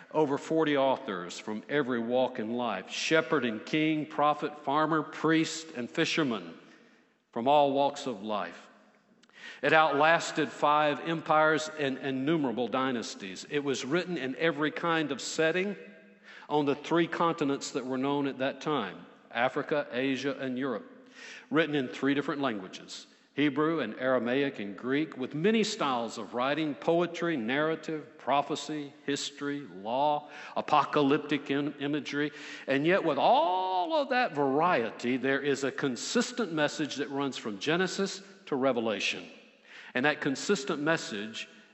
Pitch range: 130-160 Hz